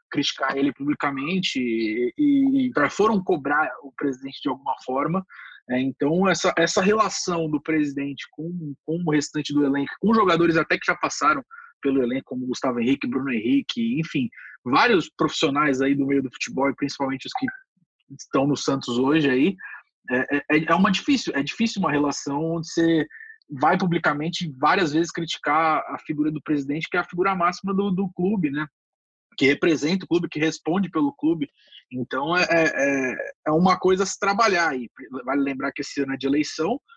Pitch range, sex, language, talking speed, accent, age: 135-185 Hz, male, Portuguese, 175 wpm, Brazilian, 20-39